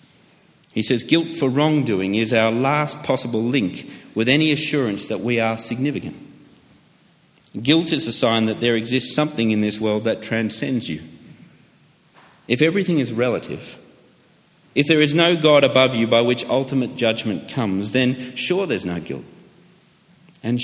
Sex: male